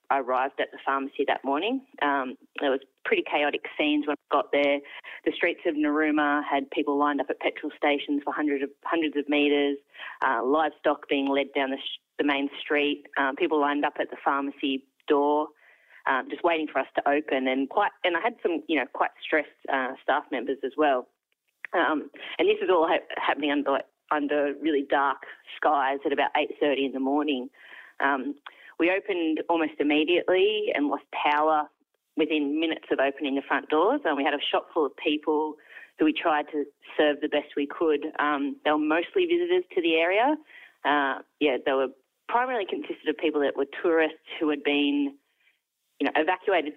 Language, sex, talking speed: English, female, 190 wpm